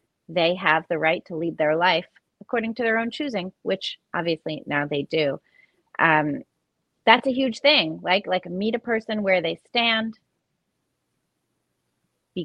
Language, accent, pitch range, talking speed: English, American, 165-205 Hz, 155 wpm